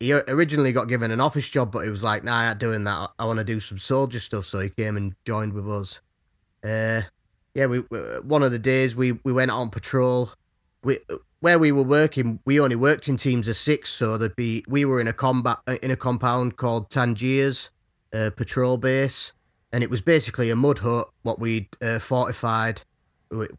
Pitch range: 105-125 Hz